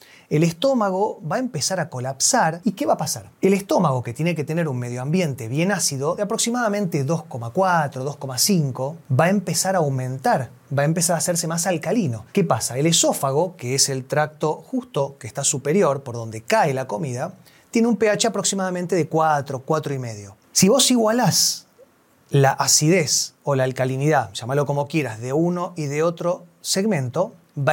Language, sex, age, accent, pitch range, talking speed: Spanish, male, 30-49, Argentinian, 135-190 Hz, 175 wpm